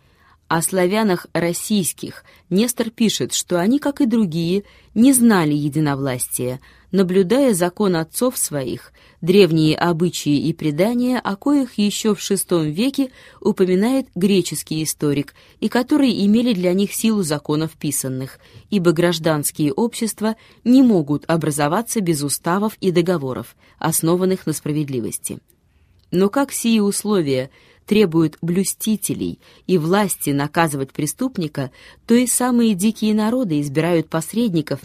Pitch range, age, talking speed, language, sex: 150-215 Hz, 20-39, 115 wpm, Russian, female